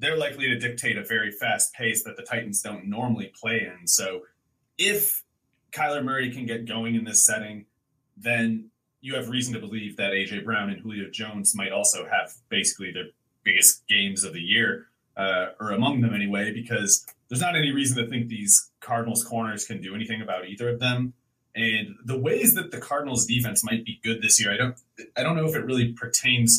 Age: 30-49